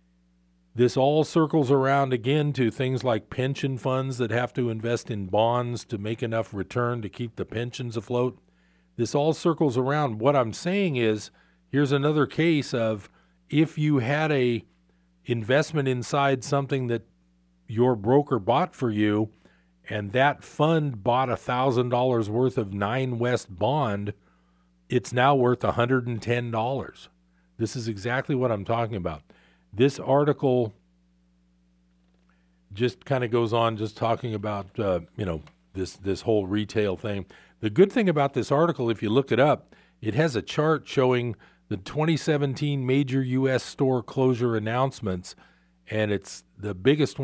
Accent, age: American, 40-59